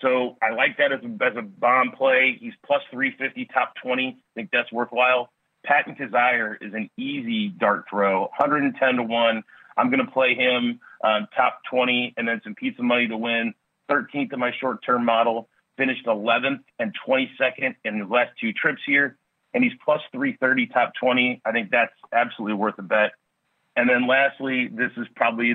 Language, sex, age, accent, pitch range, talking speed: English, male, 30-49, American, 115-180 Hz, 185 wpm